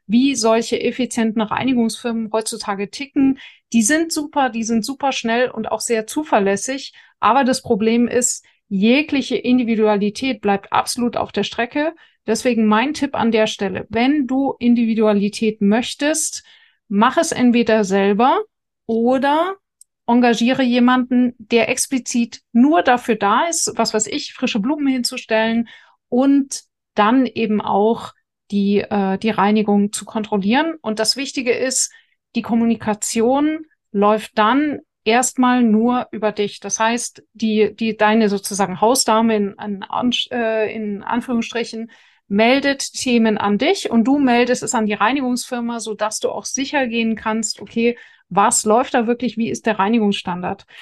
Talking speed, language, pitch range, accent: 135 wpm, German, 215-255 Hz, German